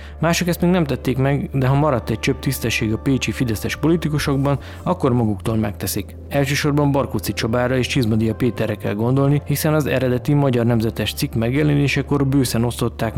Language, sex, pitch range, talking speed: Hungarian, male, 110-135 Hz, 165 wpm